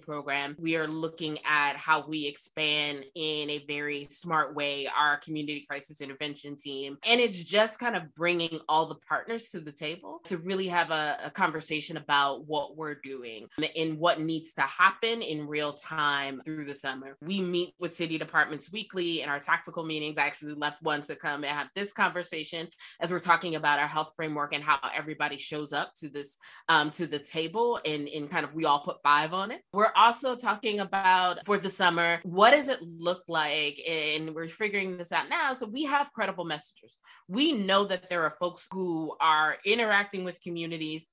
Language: English